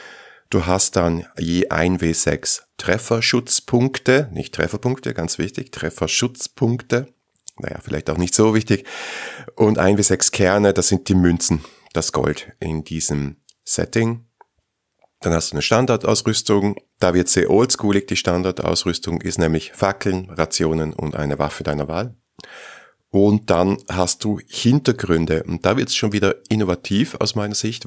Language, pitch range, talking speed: German, 85-105 Hz, 140 wpm